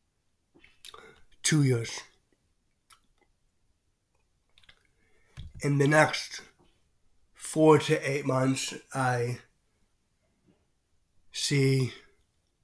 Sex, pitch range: male, 95-135 Hz